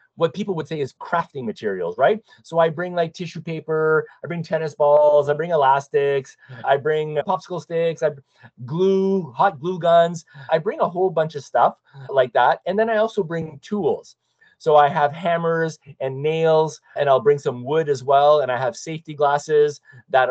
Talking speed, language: 190 wpm, English